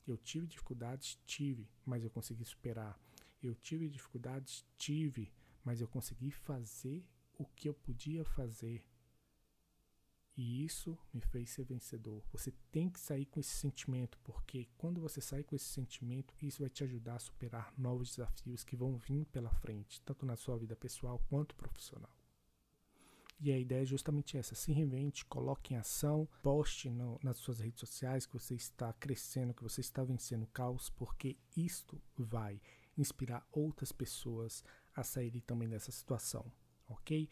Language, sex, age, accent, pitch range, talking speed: Portuguese, male, 50-69, Brazilian, 120-140 Hz, 160 wpm